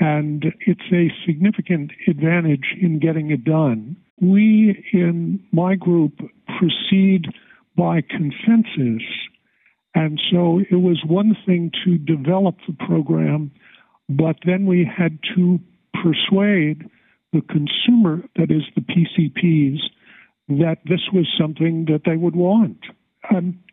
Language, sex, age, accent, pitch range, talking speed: English, male, 50-69, American, 160-190 Hz, 120 wpm